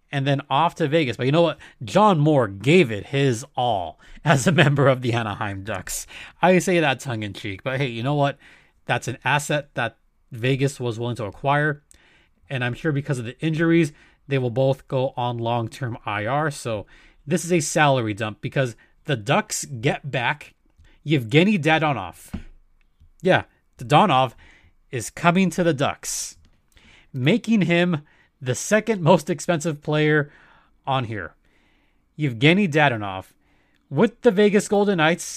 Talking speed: 155 wpm